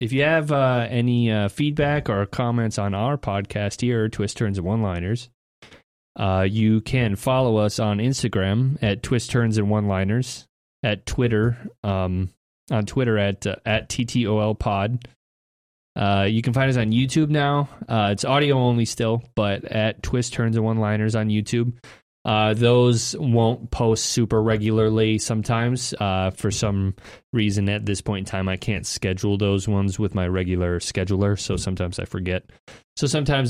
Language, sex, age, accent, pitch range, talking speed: English, male, 20-39, American, 100-120 Hz, 150 wpm